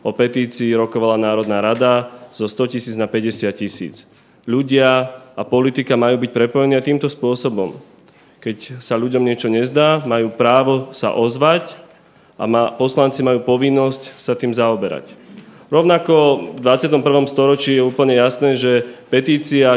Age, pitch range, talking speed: 30-49, 120-135 Hz, 135 wpm